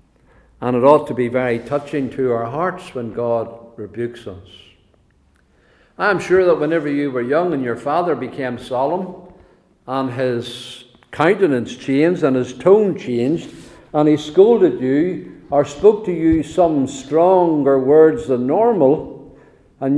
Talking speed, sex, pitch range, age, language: 145 wpm, male, 130-165 Hz, 50-69, English